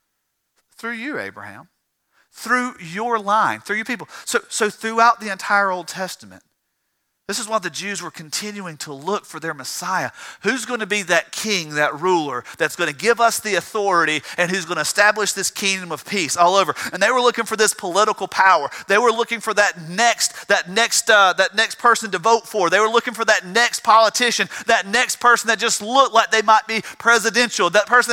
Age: 40-59